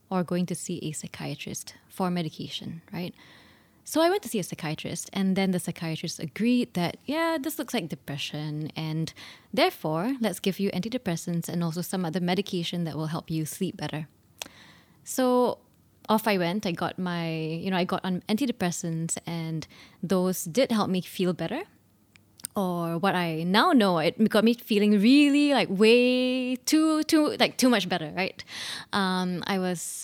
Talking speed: 170 wpm